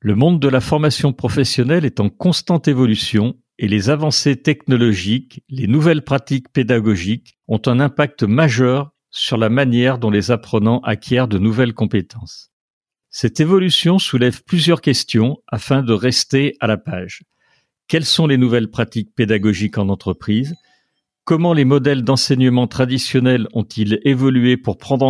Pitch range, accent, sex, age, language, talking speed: 110-150 Hz, French, male, 50-69, French, 145 wpm